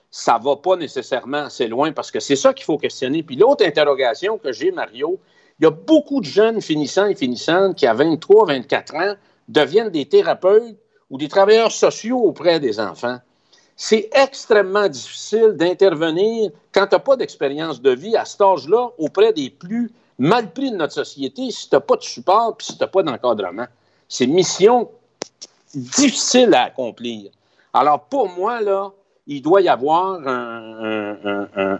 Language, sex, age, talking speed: French, male, 60-79, 175 wpm